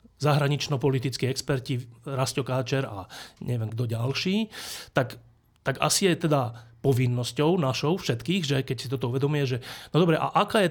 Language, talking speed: Slovak, 145 wpm